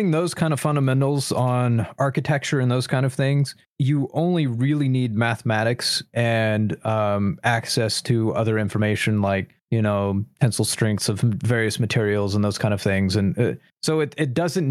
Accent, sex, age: American, male, 30-49